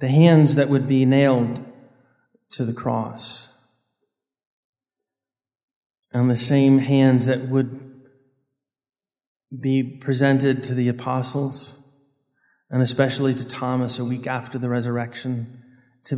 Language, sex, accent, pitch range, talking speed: English, male, American, 125-150 Hz, 110 wpm